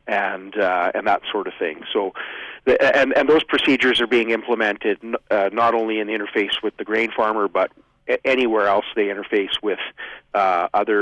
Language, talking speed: English, 195 wpm